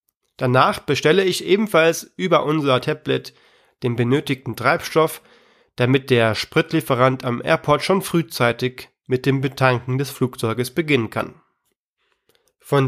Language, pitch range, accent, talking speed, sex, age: German, 125-175 Hz, German, 115 wpm, male, 30-49